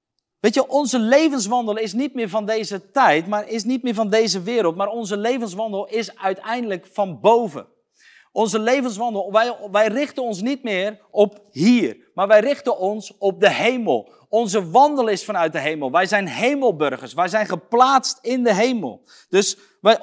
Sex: male